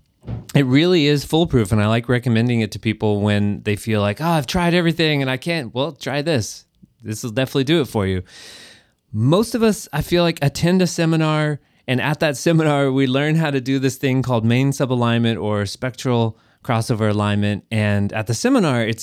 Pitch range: 110-150 Hz